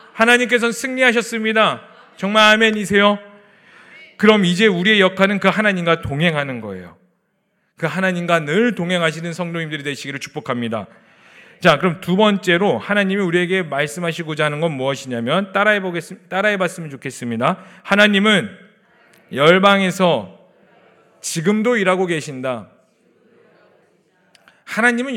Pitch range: 160-210 Hz